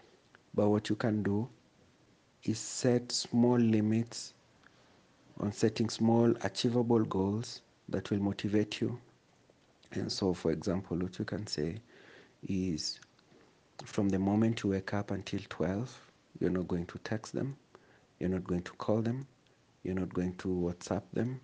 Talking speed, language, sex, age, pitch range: 150 wpm, English, male, 50-69, 95-115 Hz